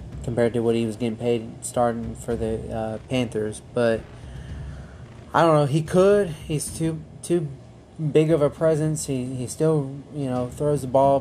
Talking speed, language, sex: 175 wpm, English, male